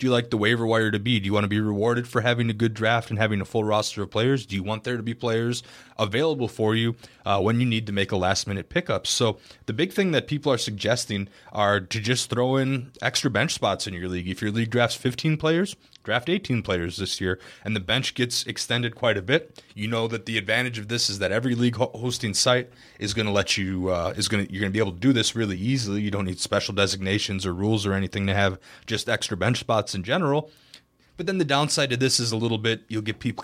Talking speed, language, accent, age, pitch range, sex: 255 wpm, English, American, 20-39, 95-120 Hz, male